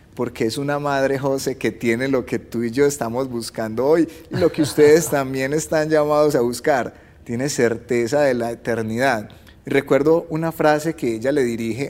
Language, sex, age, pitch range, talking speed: Spanish, male, 30-49, 115-145 Hz, 185 wpm